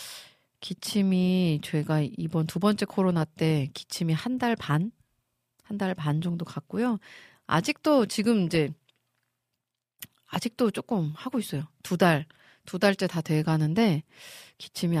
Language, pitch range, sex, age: Korean, 155-215 Hz, female, 40-59